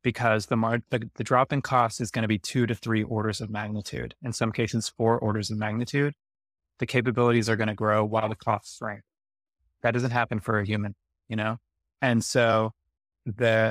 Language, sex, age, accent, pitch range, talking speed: English, male, 20-39, American, 110-125 Hz, 195 wpm